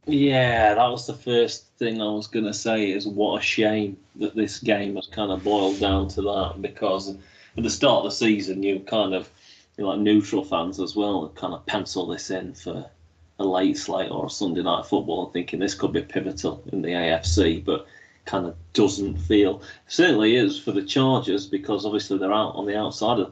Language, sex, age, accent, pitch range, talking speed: English, male, 30-49, British, 95-105 Hz, 215 wpm